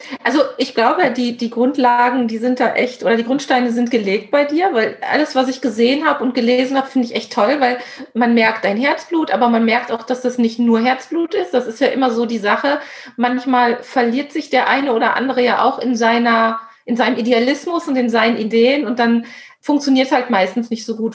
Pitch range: 225-260 Hz